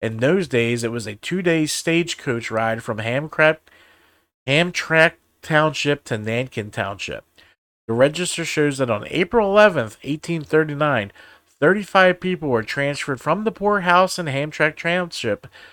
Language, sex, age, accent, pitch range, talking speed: English, male, 40-59, American, 120-160 Hz, 130 wpm